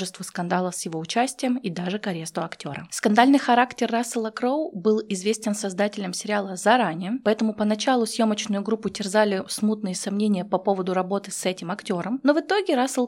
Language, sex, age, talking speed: Russian, female, 20-39, 155 wpm